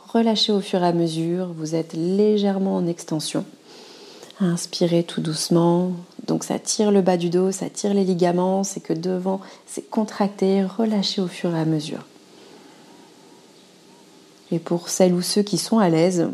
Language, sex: French, female